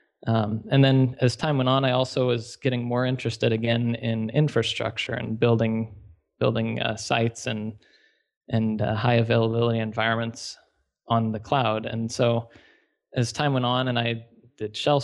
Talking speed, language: 160 wpm, English